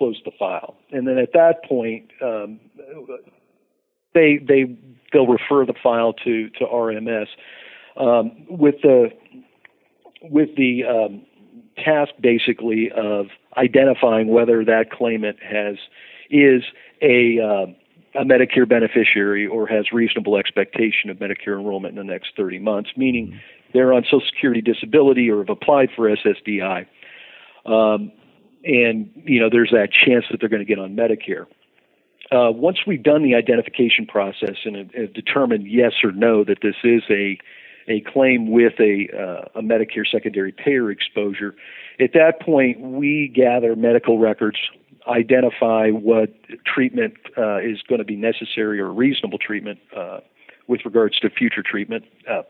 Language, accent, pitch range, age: English, American, 110-130 Hz, 50-69